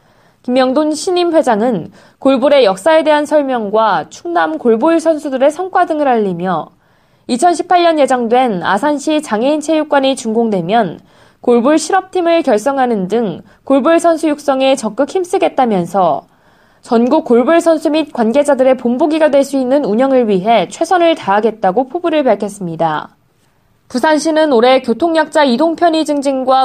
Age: 20-39